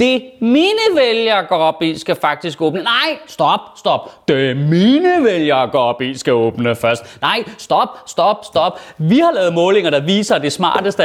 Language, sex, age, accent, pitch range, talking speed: Danish, male, 30-49, native, 155-235 Hz, 185 wpm